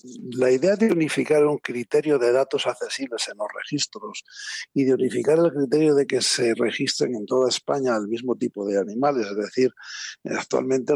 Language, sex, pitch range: Spanish, male, 130-165 Hz